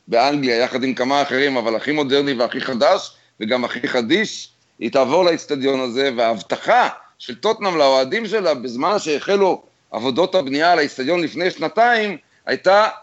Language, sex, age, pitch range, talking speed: Hebrew, male, 50-69, 155-200 Hz, 145 wpm